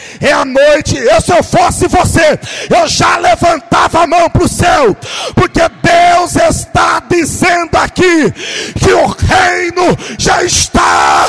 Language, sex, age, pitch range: Portuguese, male, 50-69, 275-340 Hz